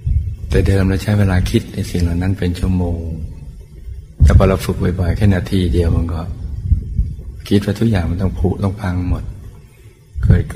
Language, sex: Thai, male